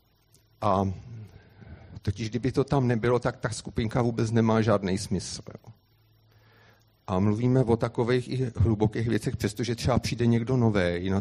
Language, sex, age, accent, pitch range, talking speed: Czech, male, 50-69, native, 100-120 Hz, 140 wpm